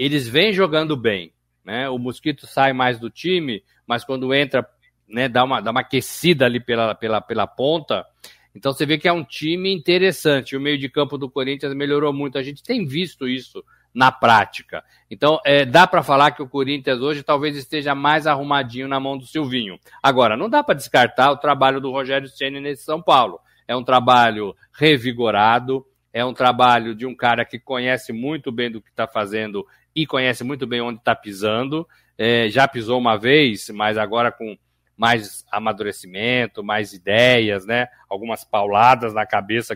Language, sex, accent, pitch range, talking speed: Portuguese, male, Brazilian, 120-150 Hz, 175 wpm